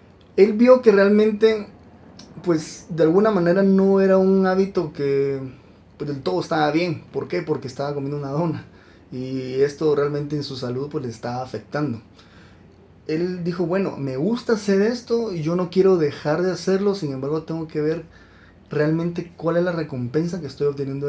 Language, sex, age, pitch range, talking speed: Spanish, male, 30-49, 140-180 Hz, 175 wpm